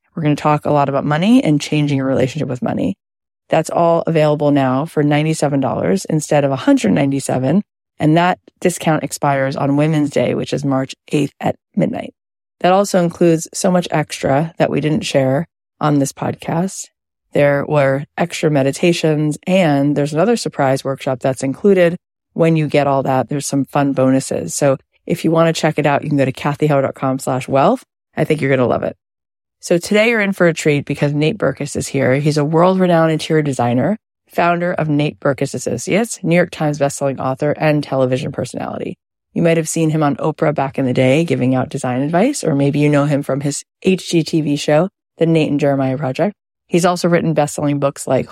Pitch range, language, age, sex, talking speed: 140-165 Hz, English, 30-49, female, 190 wpm